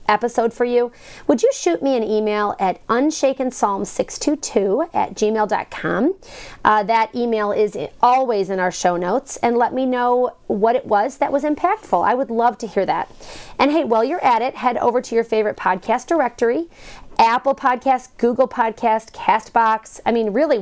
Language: English